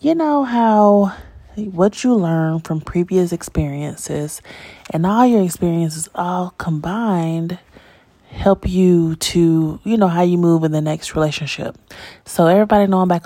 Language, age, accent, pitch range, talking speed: English, 20-39, American, 155-190 Hz, 145 wpm